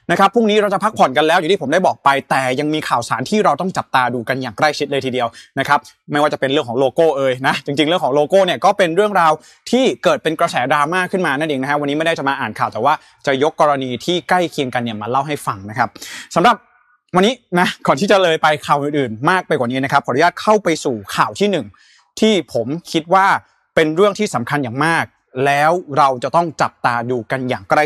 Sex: male